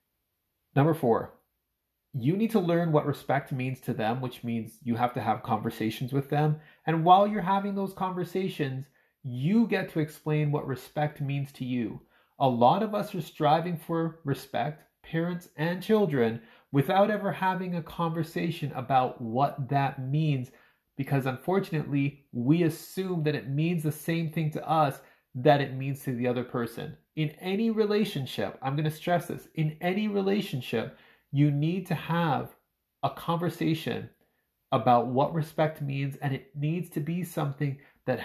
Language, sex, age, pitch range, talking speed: English, male, 30-49, 130-165 Hz, 160 wpm